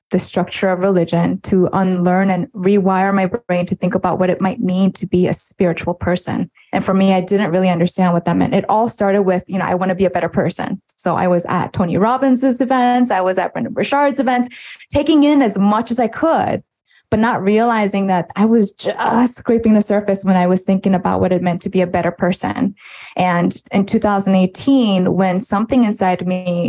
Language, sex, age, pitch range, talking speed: English, female, 20-39, 185-220 Hz, 215 wpm